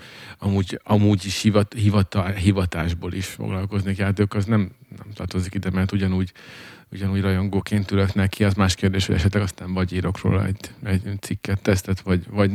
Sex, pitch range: male, 95-110 Hz